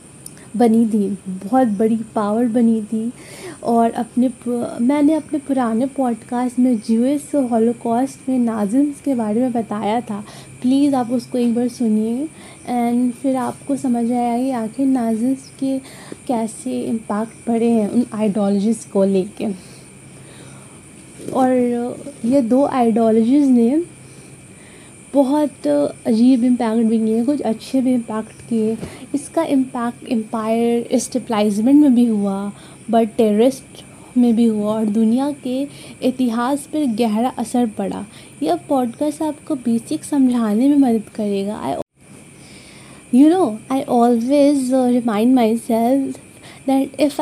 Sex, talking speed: female, 125 wpm